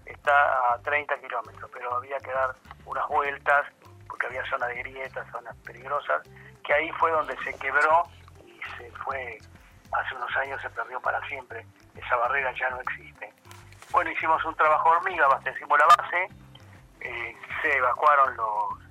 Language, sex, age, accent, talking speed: Spanish, male, 40-59, Argentinian, 160 wpm